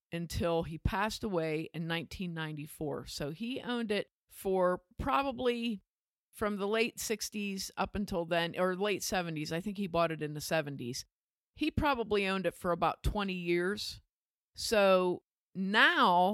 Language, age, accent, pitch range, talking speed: English, 50-69, American, 170-220 Hz, 145 wpm